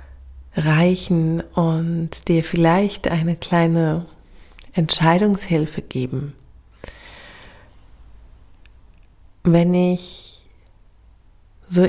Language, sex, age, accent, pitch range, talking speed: German, female, 40-59, German, 145-170 Hz, 55 wpm